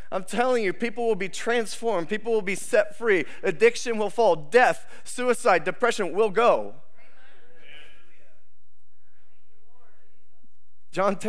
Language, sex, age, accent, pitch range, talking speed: English, male, 30-49, American, 150-195 Hz, 110 wpm